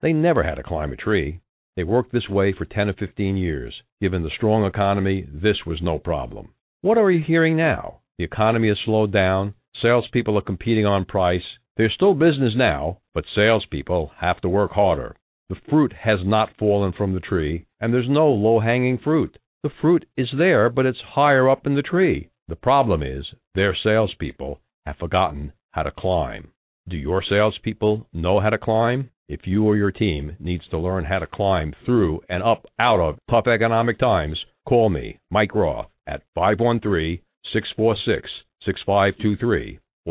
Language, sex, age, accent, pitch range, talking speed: English, male, 60-79, American, 90-115 Hz, 170 wpm